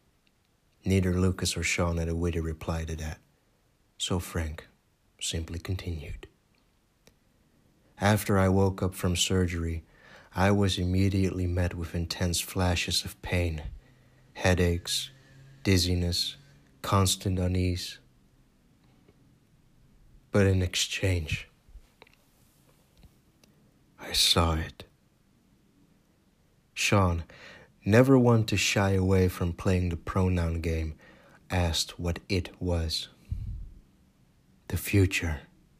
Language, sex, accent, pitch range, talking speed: English, male, American, 85-95 Hz, 95 wpm